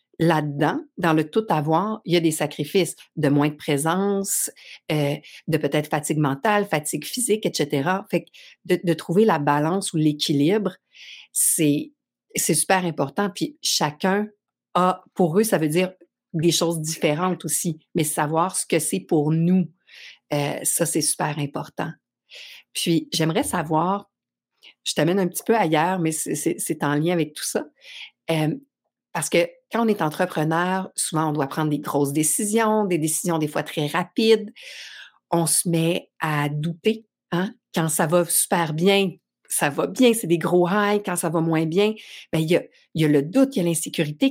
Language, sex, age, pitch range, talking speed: French, female, 50-69, 155-195 Hz, 175 wpm